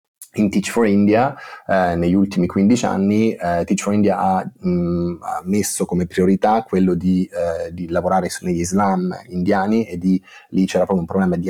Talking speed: 185 wpm